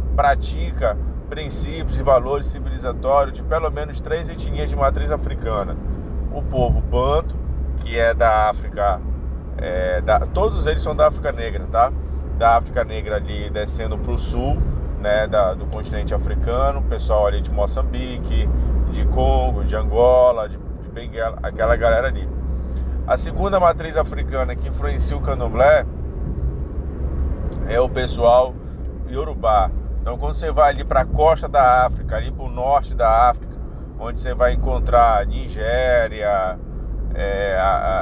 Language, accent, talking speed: Portuguese, Brazilian, 145 wpm